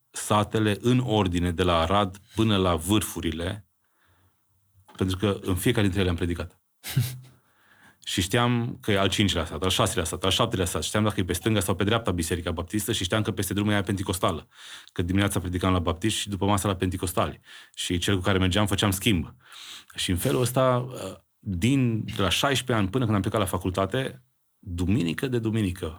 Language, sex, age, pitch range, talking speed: Romanian, male, 30-49, 90-110 Hz, 190 wpm